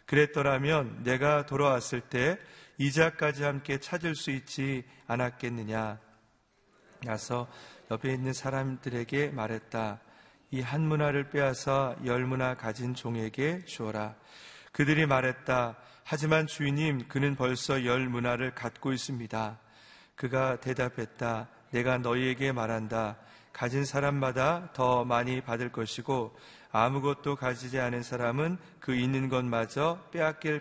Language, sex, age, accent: Korean, male, 40-59, native